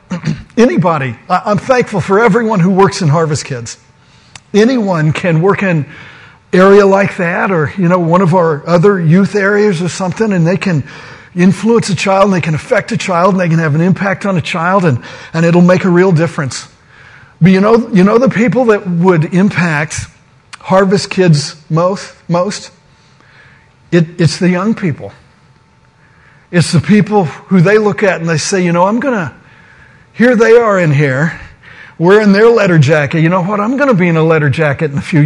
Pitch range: 155-200 Hz